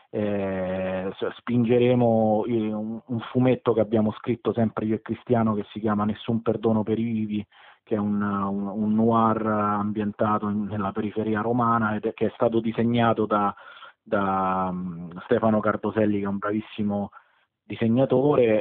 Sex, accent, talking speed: male, native, 140 wpm